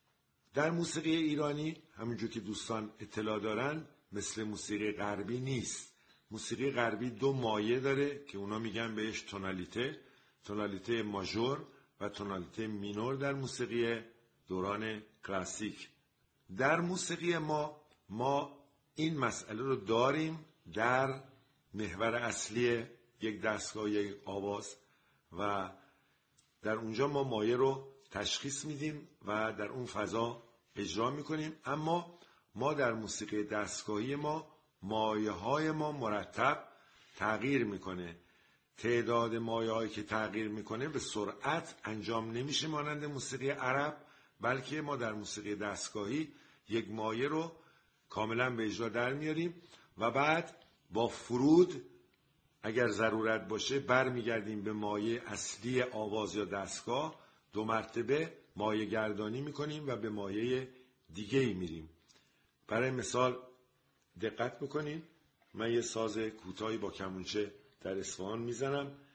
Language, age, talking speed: Persian, 50-69, 115 wpm